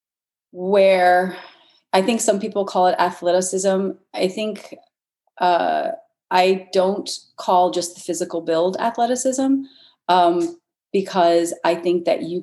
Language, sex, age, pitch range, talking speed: English, female, 30-49, 170-240 Hz, 120 wpm